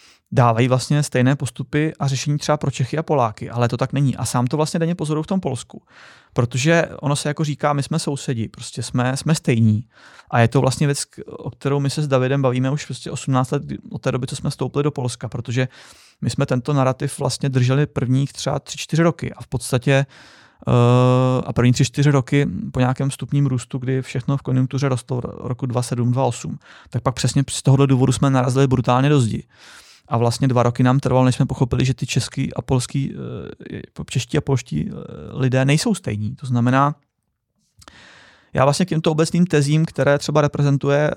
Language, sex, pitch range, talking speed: Czech, male, 120-140 Hz, 190 wpm